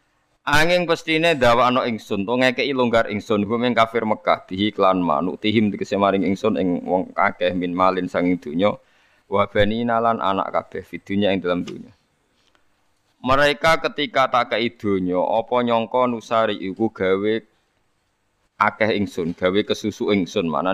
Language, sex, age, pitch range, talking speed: Indonesian, male, 20-39, 100-120 Hz, 150 wpm